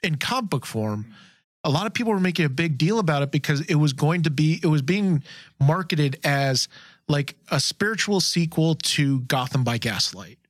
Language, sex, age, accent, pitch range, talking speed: English, male, 30-49, American, 130-160 Hz, 195 wpm